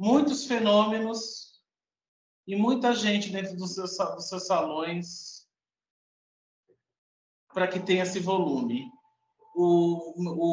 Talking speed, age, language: 85 wpm, 50-69, Portuguese